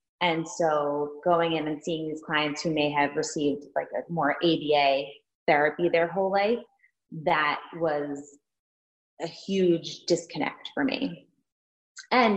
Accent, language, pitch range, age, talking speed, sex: American, English, 150-185 Hz, 20-39, 130 wpm, female